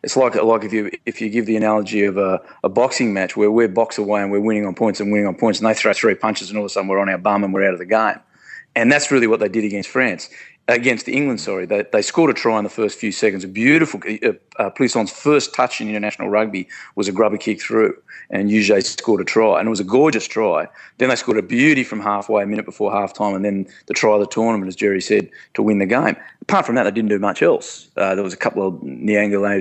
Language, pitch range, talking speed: English, 100-110 Hz, 275 wpm